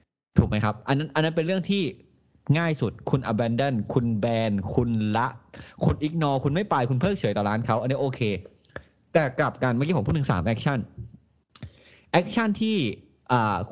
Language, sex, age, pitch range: Thai, male, 20-39, 105-140 Hz